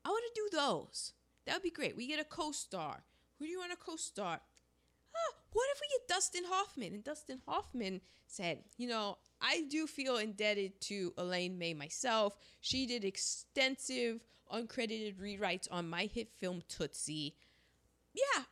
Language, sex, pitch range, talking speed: English, female, 190-265 Hz, 160 wpm